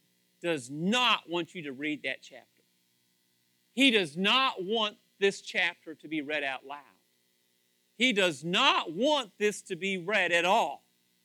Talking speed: 155 wpm